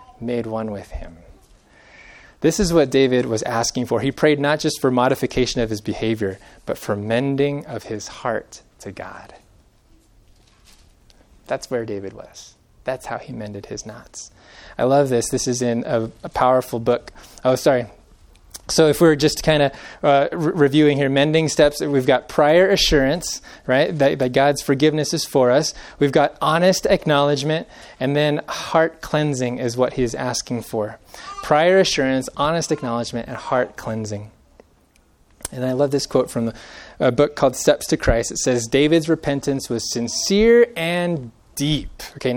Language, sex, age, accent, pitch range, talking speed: English, male, 20-39, American, 125-175 Hz, 160 wpm